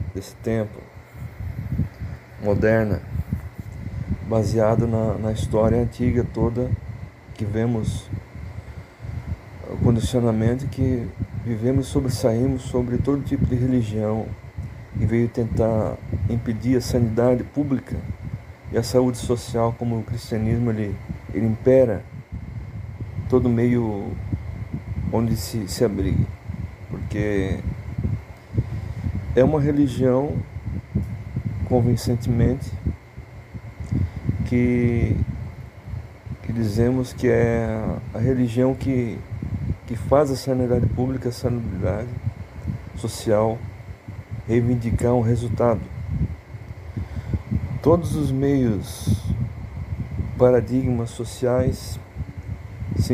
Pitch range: 105-125 Hz